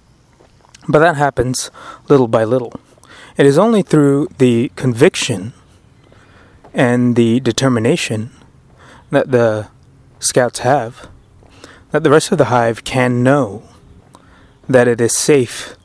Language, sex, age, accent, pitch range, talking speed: English, male, 30-49, American, 100-130 Hz, 115 wpm